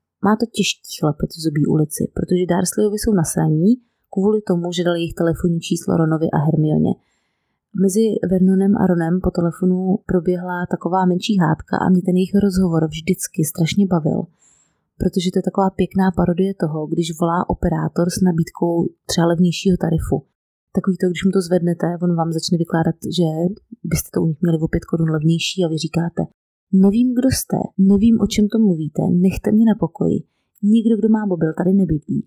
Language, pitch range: Czech, 165-195 Hz